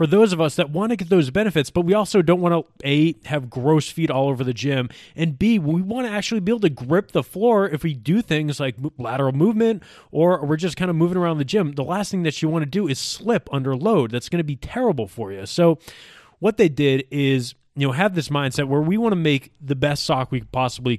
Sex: male